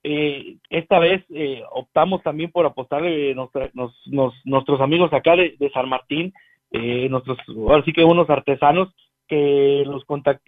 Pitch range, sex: 135-175 Hz, male